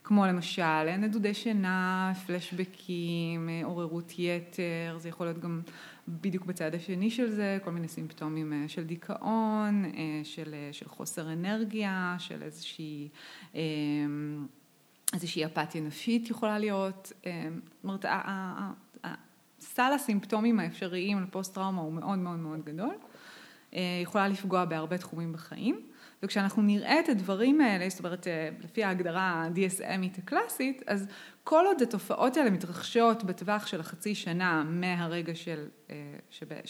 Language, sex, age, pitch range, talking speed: Hebrew, female, 20-39, 170-225 Hz, 120 wpm